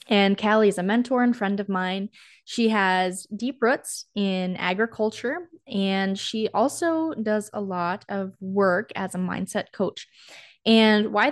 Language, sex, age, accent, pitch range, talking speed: English, female, 10-29, American, 185-235 Hz, 155 wpm